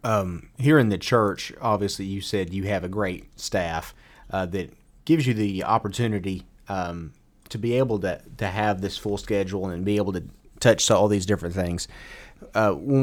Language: English